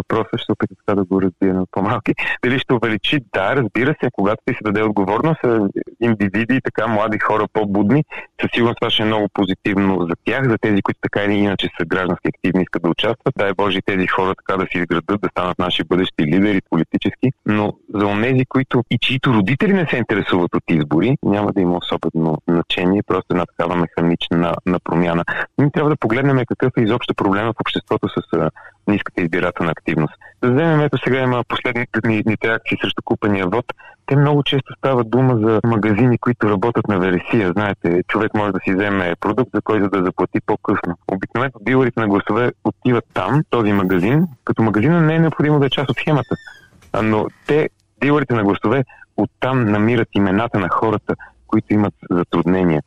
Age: 30-49